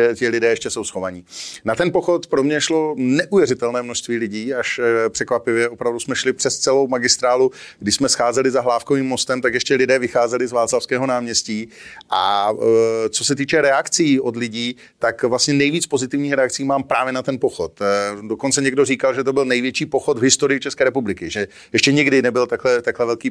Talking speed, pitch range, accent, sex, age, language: 185 wpm, 120-135 Hz, native, male, 40-59, Czech